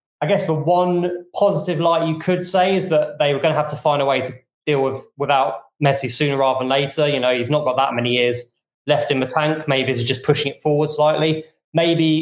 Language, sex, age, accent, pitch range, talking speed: English, male, 20-39, British, 130-160 Hz, 240 wpm